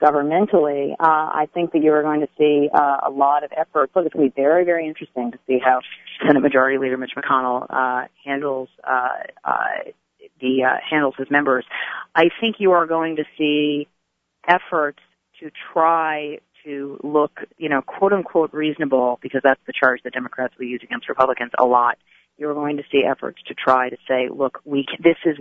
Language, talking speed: English, 195 wpm